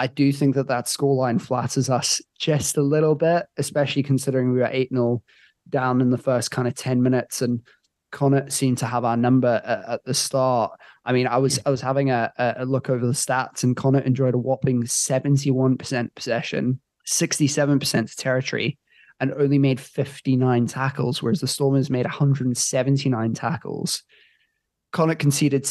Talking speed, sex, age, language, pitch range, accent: 190 wpm, male, 20-39, English, 125-140 Hz, British